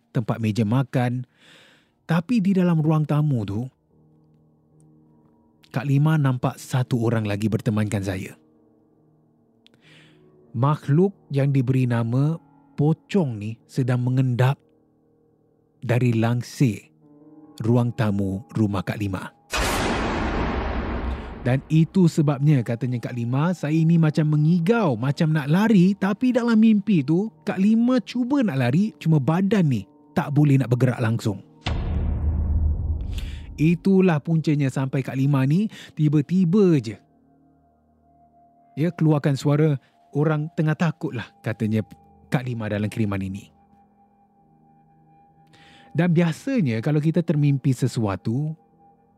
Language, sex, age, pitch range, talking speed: Malay, male, 30-49, 115-160 Hz, 110 wpm